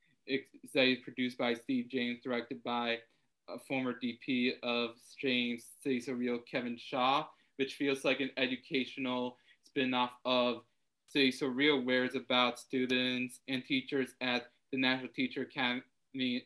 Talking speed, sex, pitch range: 135 wpm, male, 125-135 Hz